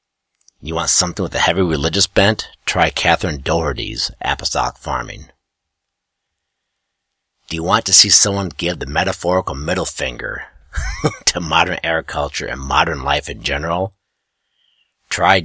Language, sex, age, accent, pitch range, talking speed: English, male, 50-69, American, 70-90 Hz, 130 wpm